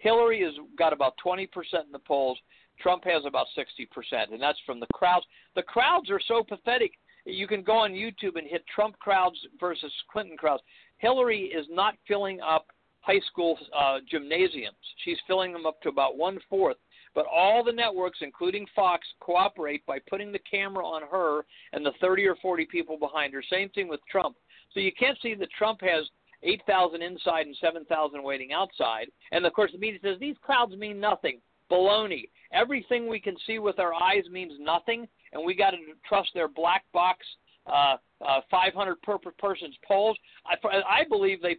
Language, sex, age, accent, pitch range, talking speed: English, male, 50-69, American, 165-220 Hz, 185 wpm